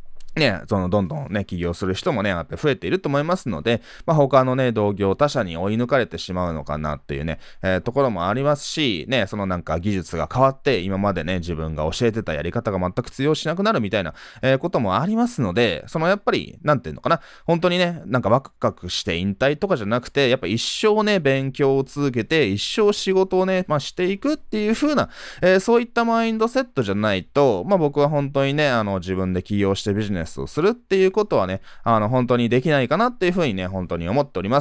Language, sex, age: Japanese, male, 20-39